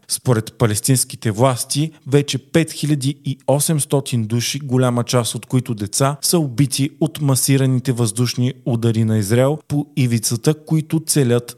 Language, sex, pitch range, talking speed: Bulgarian, male, 120-145 Hz, 120 wpm